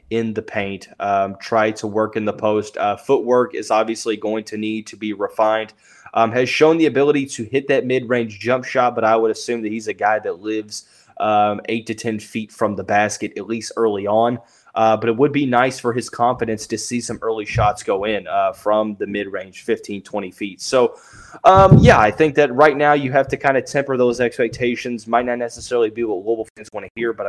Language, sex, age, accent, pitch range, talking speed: English, male, 20-39, American, 105-125 Hz, 230 wpm